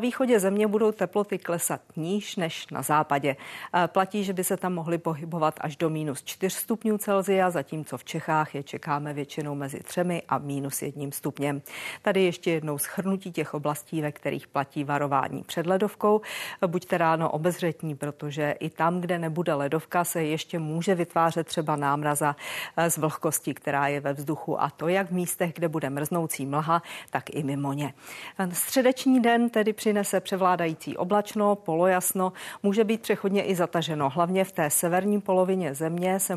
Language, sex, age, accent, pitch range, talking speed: Czech, female, 40-59, native, 150-195 Hz, 160 wpm